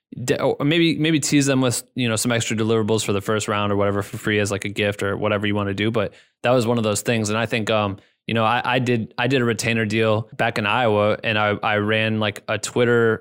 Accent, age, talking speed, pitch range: American, 20-39, 275 wpm, 110-130 Hz